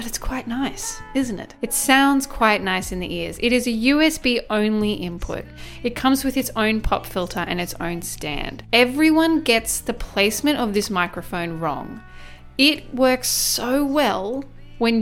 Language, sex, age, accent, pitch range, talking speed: English, female, 10-29, Australian, 195-260 Hz, 170 wpm